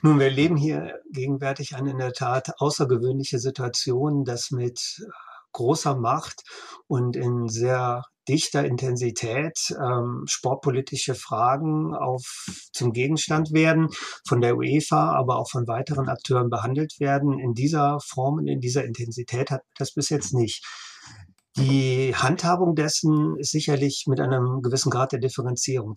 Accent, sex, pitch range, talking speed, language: German, male, 125-145 Hz, 135 wpm, German